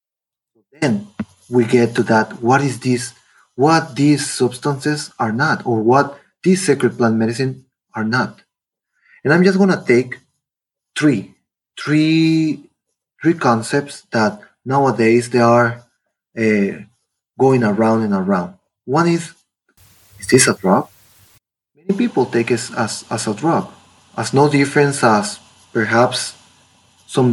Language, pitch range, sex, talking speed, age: English, 115-160 Hz, male, 130 wpm, 30-49